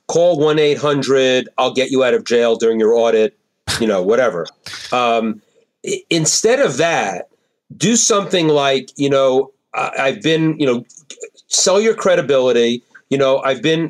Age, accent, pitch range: 40-59, American, 120-150 Hz